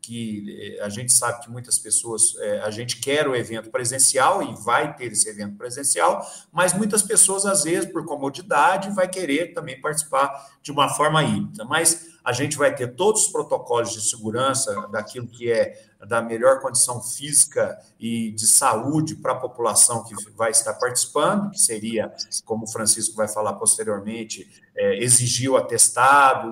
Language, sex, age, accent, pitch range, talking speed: Portuguese, male, 50-69, Brazilian, 115-155 Hz, 165 wpm